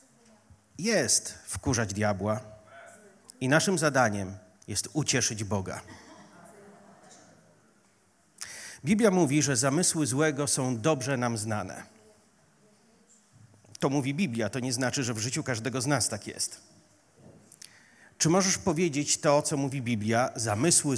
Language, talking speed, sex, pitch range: Polish, 115 wpm, male, 115-150 Hz